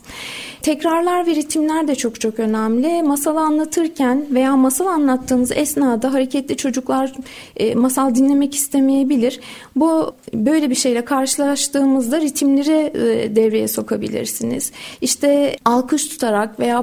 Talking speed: 105 wpm